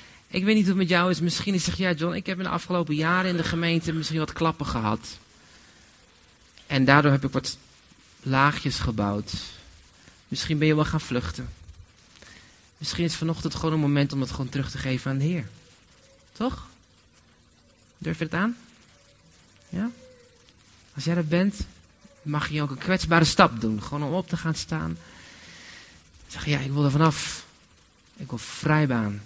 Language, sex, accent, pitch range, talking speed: Dutch, male, Dutch, 120-185 Hz, 180 wpm